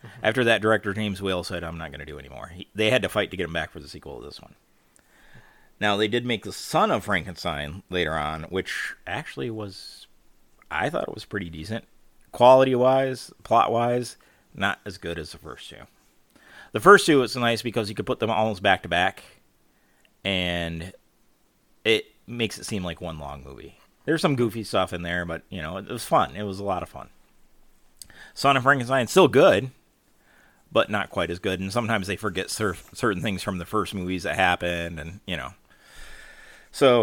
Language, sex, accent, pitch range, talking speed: English, male, American, 90-120 Hz, 195 wpm